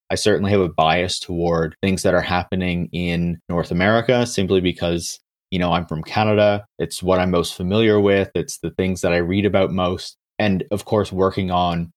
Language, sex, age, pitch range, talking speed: English, male, 30-49, 90-105 Hz, 195 wpm